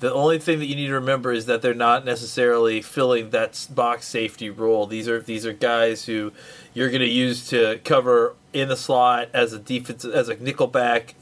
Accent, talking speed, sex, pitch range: American, 210 wpm, male, 115-145 Hz